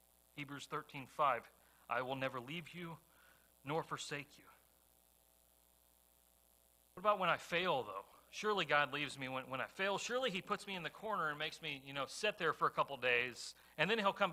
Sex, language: male, English